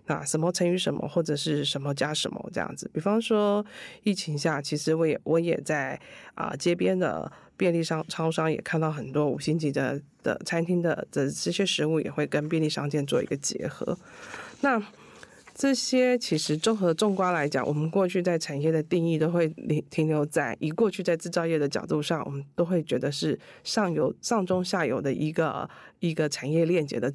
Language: Chinese